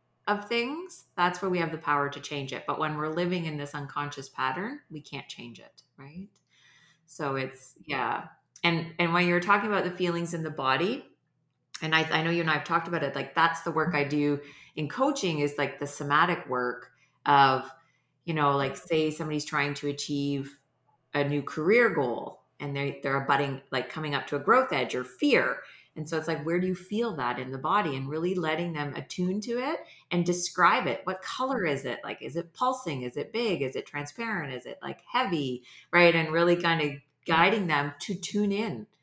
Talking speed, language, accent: 210 wpm, English, American